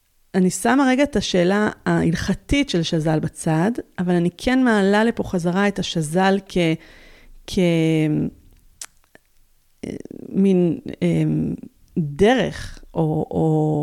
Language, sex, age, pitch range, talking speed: Hebrew, female, 30-49, 175-235 Hz, 100 wpm